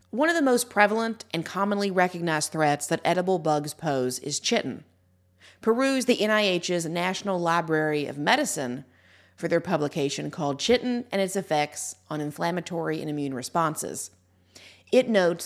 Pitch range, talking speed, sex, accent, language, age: 145-195 Hz, 145 wpm, female, American, English, 40-59